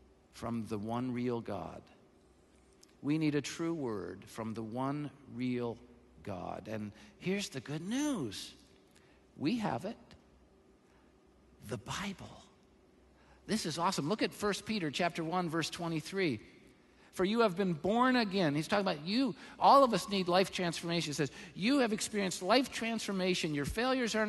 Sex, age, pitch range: male, 50-69, 150-215 Hz